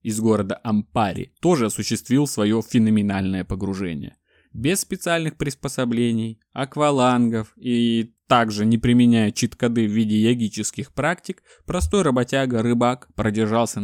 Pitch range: 105-120 Hz